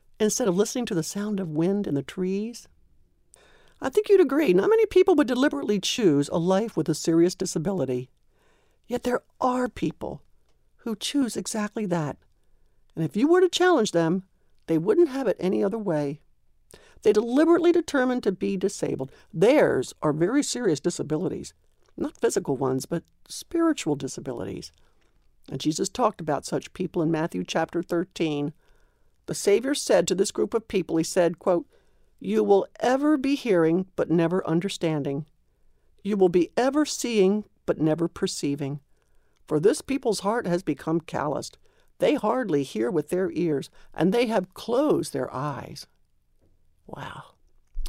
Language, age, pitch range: English, 60-79, 160-230 Hz